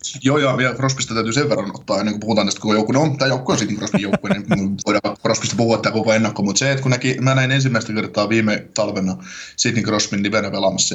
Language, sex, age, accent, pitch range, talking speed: Finnish, male, 20-39, native, 110-135 Hz, 250 wpm